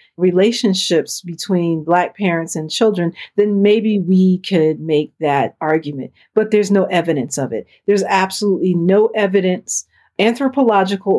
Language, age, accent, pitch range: English, 40-59, American, 160-205 Hz